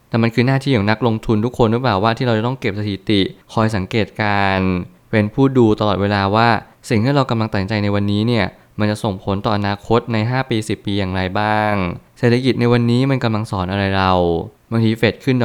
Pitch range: 100-120 Hz